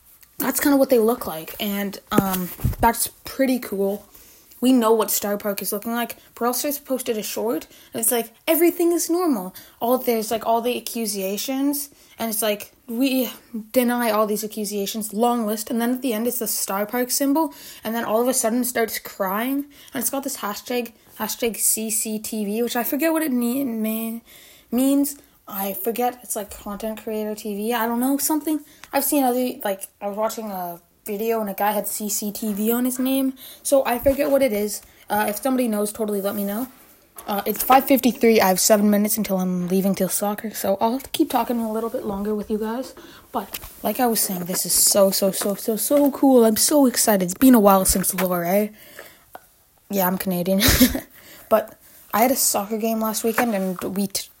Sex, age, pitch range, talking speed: female, 20-39, 205-255 Hz, 200 wpm